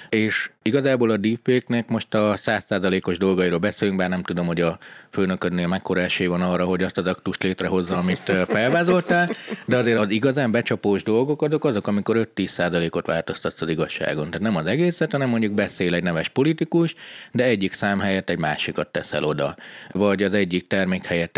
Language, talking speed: Hungarian, 175 wpm